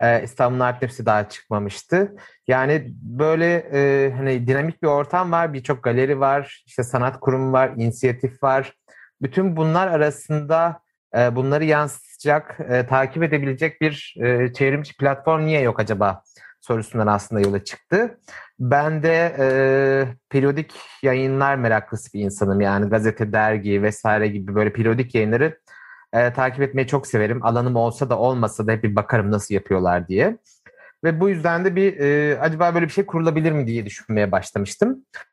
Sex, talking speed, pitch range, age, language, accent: male, 150 wpm, 115-150 Hz, 30-49, Turkish, native